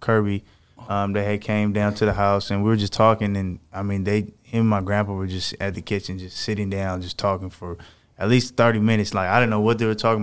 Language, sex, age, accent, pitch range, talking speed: English, male, 20-39, American, 100-110 Hz, 270 wpm